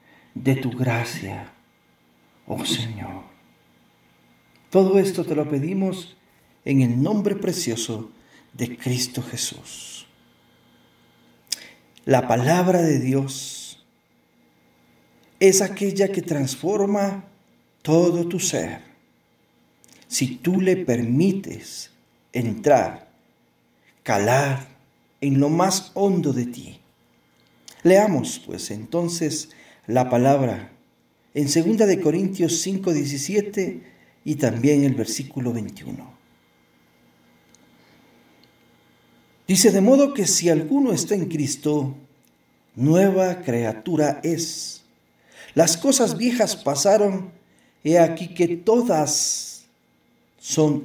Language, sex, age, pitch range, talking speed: Spanish, male, 50-69, 115-185 Hz, 90 wpm